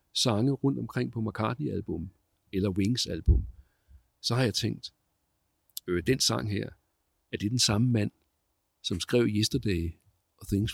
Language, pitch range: Danish, 95-130 Hz